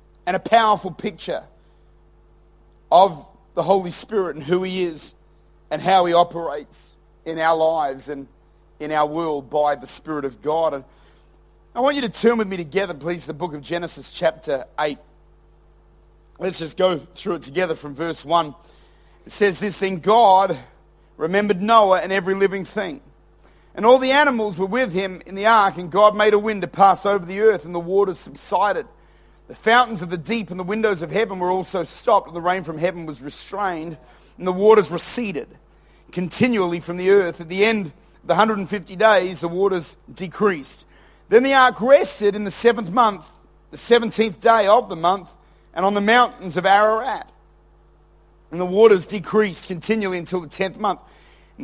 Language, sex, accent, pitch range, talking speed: English, male, Australian, 170-215 Hz, 180 wpm